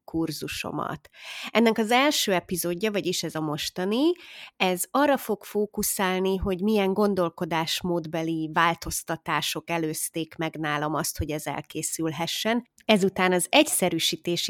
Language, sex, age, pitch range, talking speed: Hungarian, female, 20-39, 170-205 Hz, 110 wpm